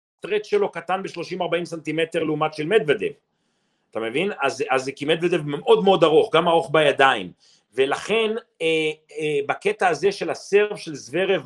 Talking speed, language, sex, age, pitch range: 150 wpm, Hebrew, male, 40-59, 155-245 Hz